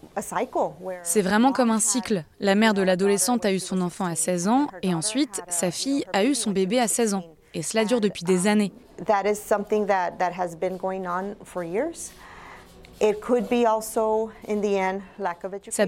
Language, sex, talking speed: French, female, 130 wpm